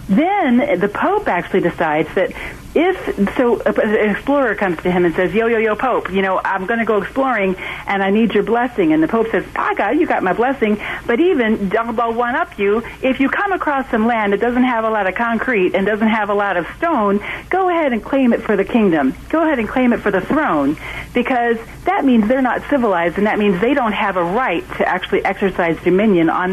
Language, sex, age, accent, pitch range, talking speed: English, female, 40-59, American, 180-250 Hz, 225 wpm